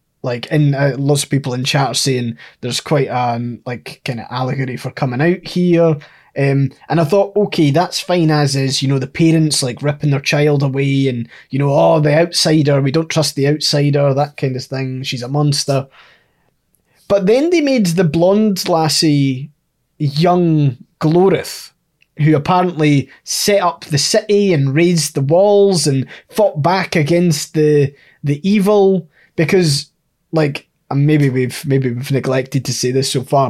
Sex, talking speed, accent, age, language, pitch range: male, 170 wpm, British, 20-39, English, 135-165 Hz